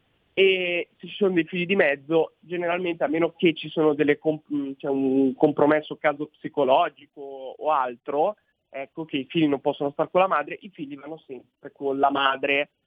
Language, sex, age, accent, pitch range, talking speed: Italian, male, 30-49, native, 140-170 Hz, 190 wpm